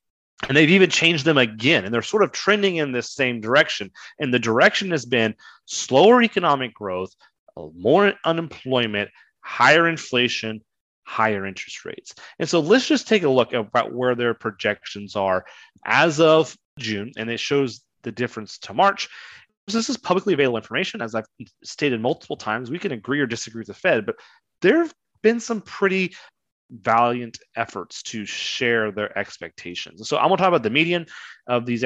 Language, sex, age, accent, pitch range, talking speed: English, male, 30-49, American, 110-165 Hz, 175 wpm